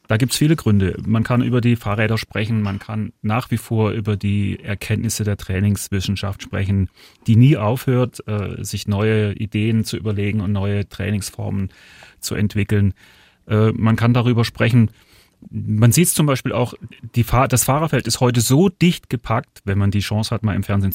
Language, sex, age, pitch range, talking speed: German, male, 30-49, 100-115 Hz, 185 wpm